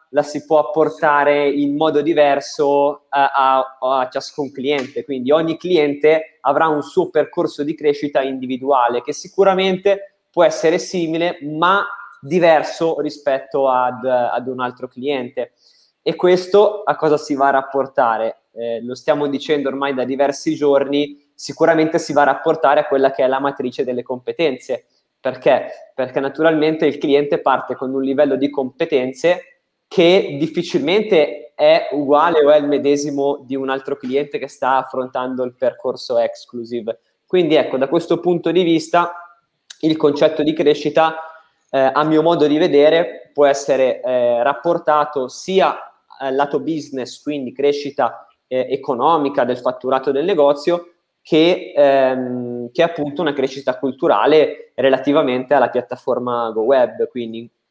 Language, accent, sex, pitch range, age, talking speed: Italian, native, male, 135-160 Hz, 20-39, 145 wpm